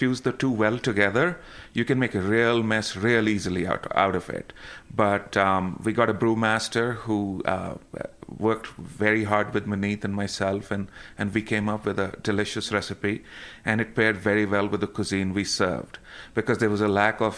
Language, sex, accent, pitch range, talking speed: English, male, Indian, 95-110 Hz, 195 wpm